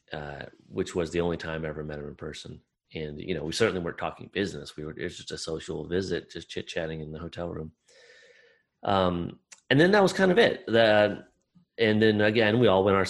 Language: English